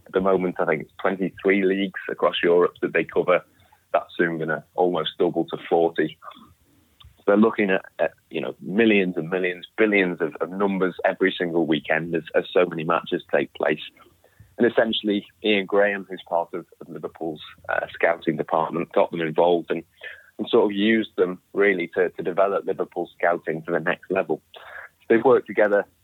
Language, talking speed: English, 180 wpm